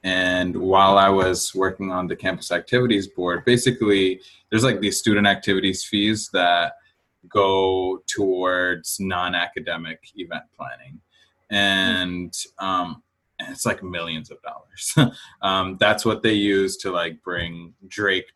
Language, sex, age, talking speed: English, male, 20-39, 125 wpm